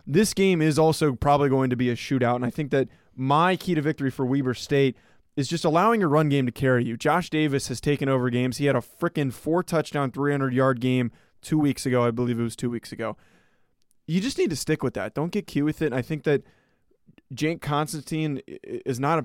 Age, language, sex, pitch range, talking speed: 20-39, English, male, 130-160 Hz, 230 wpm